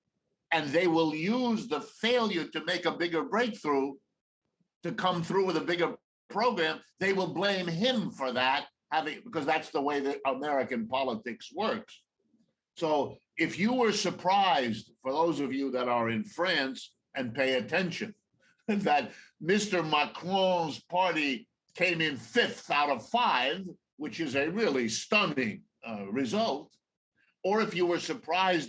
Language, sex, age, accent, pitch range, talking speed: English, male, 50-69, American, 140-195 Hz, 145 wpm